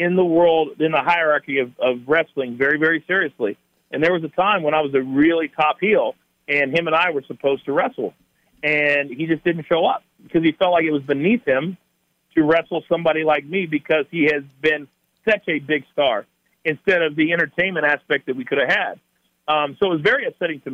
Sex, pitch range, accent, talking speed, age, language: male, 145-175 Hz, American, 220 wpm, 50-69, English